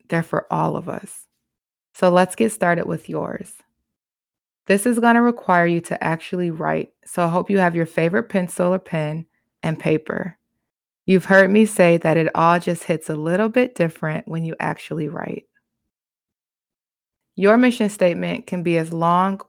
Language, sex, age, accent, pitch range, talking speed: English, female, 20-39, American, 165-200 Hz, 170 wpm